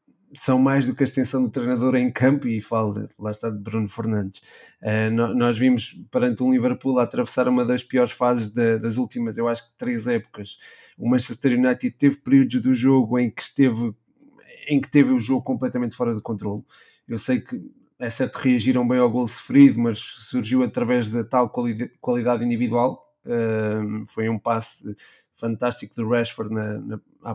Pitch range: 115-135 Hz